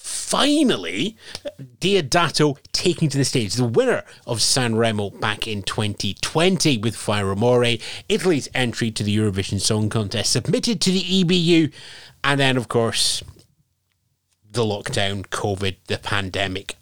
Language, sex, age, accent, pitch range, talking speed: English, male, 30-49, British, 110-155 Hz, 130 wpm